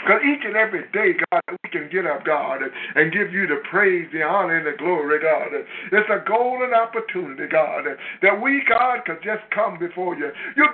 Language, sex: English, male